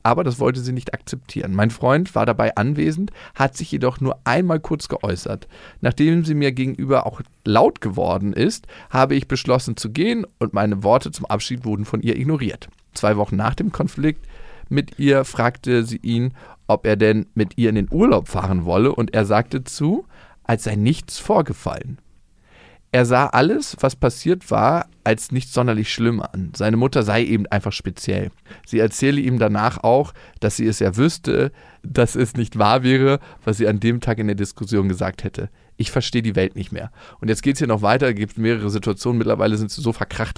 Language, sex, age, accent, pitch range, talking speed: German, male, 40-59, German, 105-135 Hz, 195 wpm